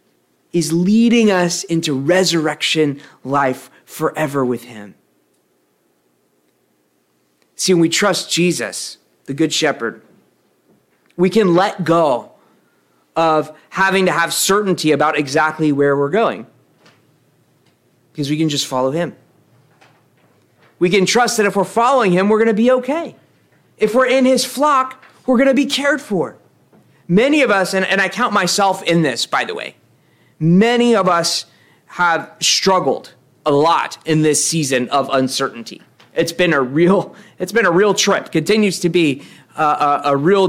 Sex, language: male, English